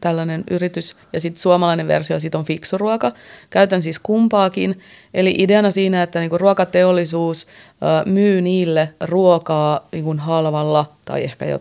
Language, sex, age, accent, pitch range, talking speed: Finnish, female, 30-49, native, 155-195 Hz, 135 wpm